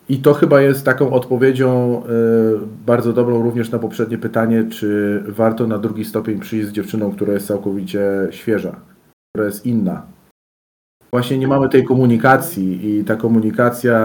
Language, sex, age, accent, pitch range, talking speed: Polish, male, 40-59, native, 110-135 Hz, 155 wpm